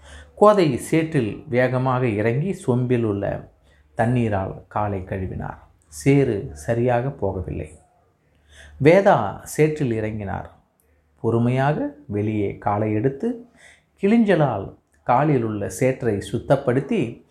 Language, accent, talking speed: Tamil, native, 85 wpm